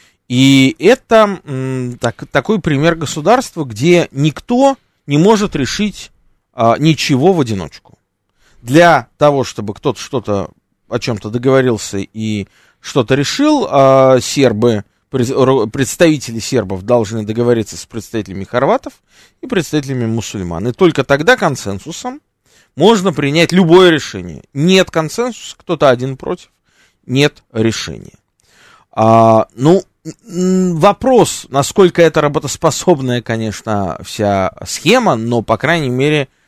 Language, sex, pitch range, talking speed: Russian, male, 110-165 Hz, 100 wpm